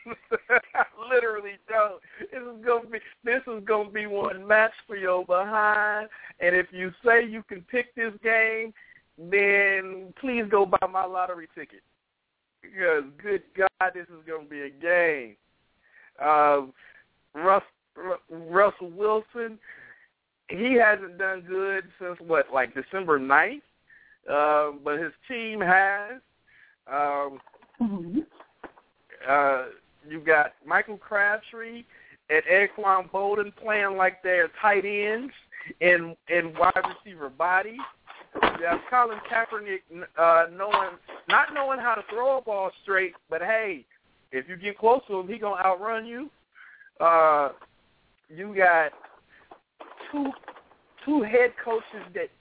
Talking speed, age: 130 wpm, 50-69